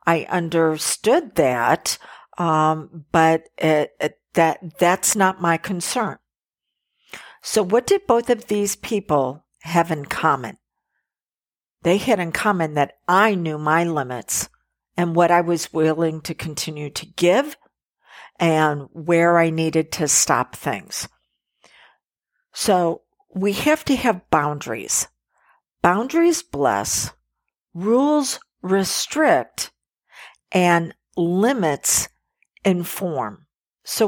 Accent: American